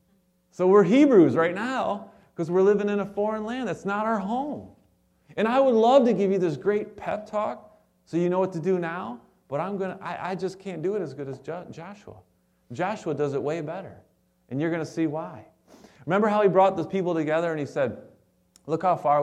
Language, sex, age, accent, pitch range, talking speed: English, male, 30-49, American, 115-180 Hz, 220 wpm